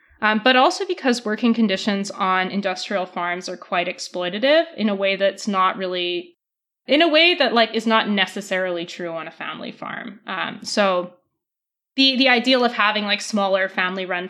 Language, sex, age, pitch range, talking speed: English, female, 20-39, 185-230 Hz, 170 wpm